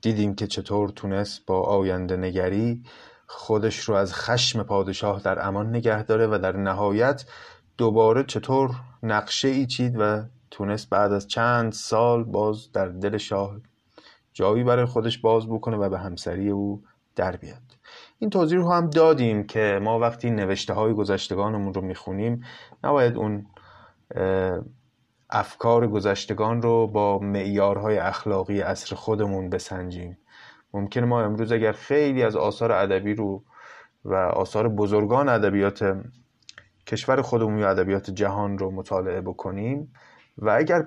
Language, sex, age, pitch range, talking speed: Persian, male, 30-49, 100-115 Hz, 135 wpm